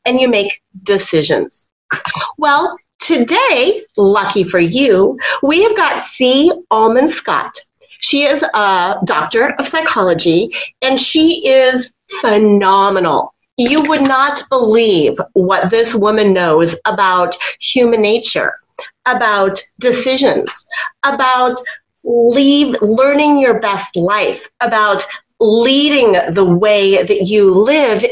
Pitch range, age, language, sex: 210-295 Hz, 30-49, English, female